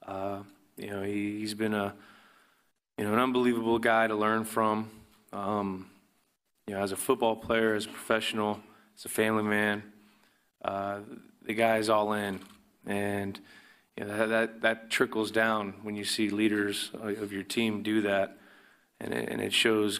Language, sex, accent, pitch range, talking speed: English, male, American, 100-110 Hz, 170 wpm